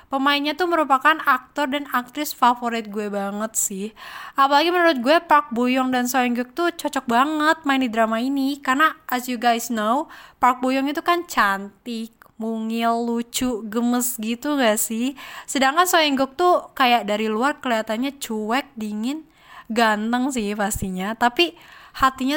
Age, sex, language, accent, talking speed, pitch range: 20-39, female, Indonesian, native, 155 wpm, 235-295 Hz